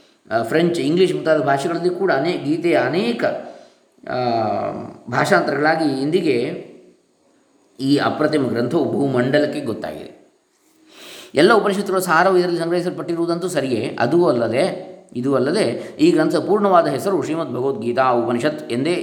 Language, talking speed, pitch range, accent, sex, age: Kannada, 105 wpm, 135-170 Hz, native, male, 20-39